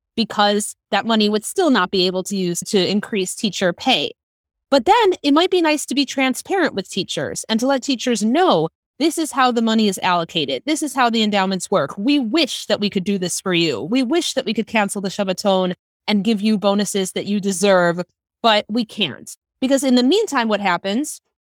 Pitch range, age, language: 195-260 Hz, 30-49, English